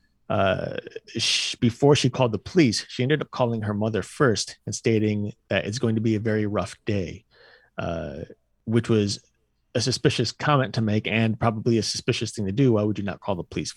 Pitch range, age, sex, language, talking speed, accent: 105-130 Hz, 30-49, male, English, 200 wpm, American